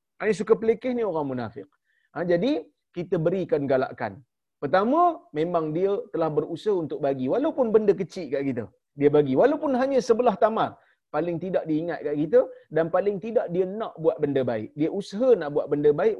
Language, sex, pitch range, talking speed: Malayalam, male, 155-200 Hz, 180 wpm